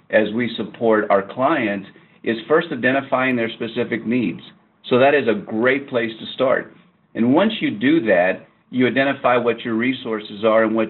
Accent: American